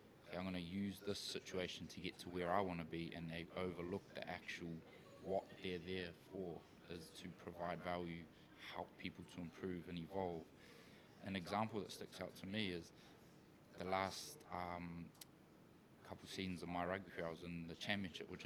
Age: 20-39